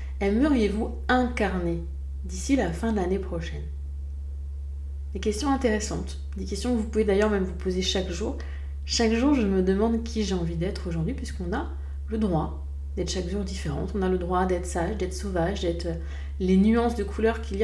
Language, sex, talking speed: French, female, 185 wpm